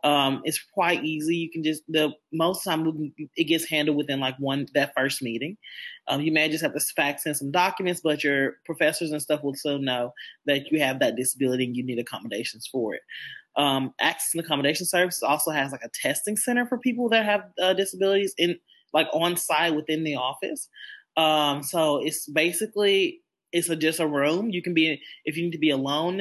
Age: 20-39